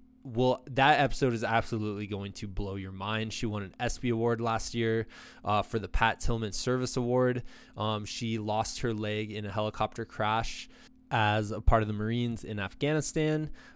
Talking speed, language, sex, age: 180 wpm, English, male, 20-39